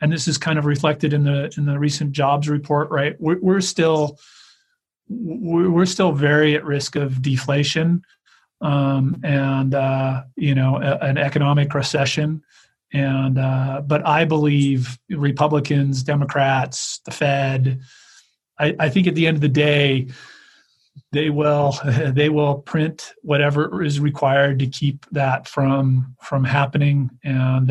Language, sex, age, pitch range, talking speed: English, male, 40-59, 135-155 Hz, 140 wpm